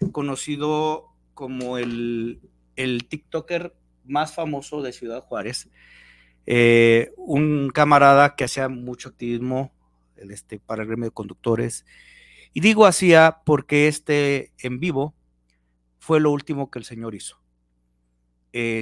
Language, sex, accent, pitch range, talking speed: Spanish, male, Mexican, 110-145 Hz, 120 wpm